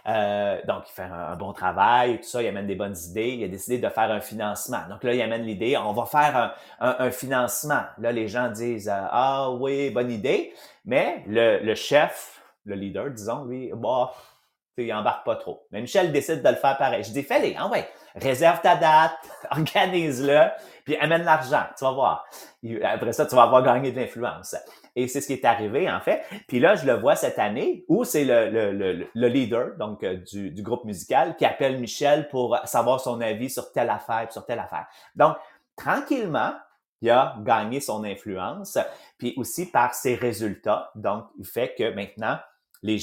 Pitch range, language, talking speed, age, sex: 110-145 Hz, English, 205 wpm, 30-49, male